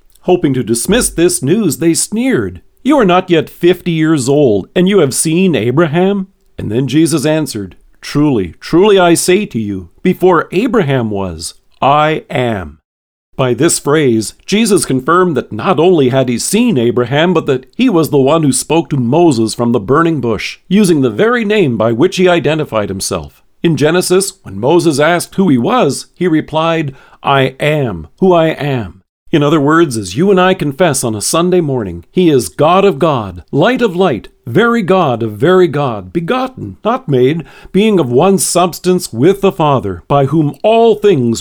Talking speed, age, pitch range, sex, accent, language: 180 wpm, 50-69, 125-185 Hz, male, American, English